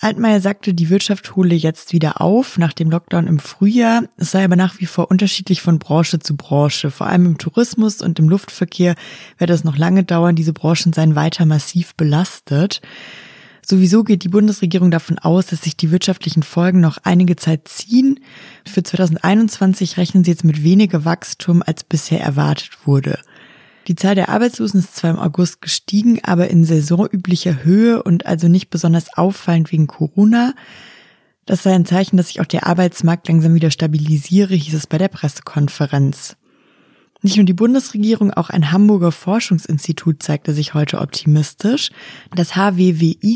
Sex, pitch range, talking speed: female, 165-195 Hz, 165 wpm